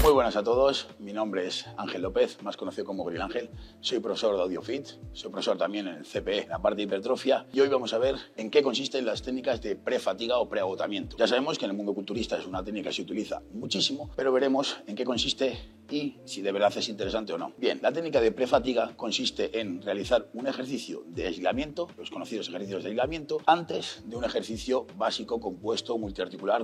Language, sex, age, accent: Spanish, male, 30-49, Spanish